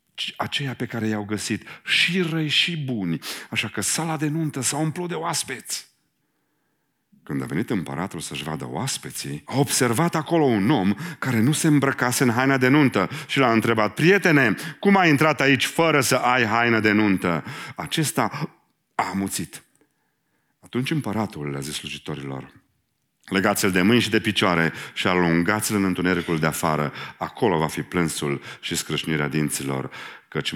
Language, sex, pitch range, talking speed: Romanian, male, 90-145 Hz, 155 wpm